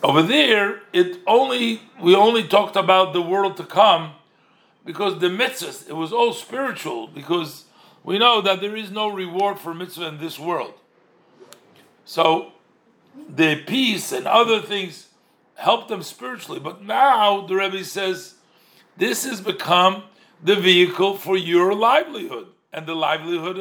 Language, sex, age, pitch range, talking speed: English, male, 50-69, 180-235 Hz, 145 wpm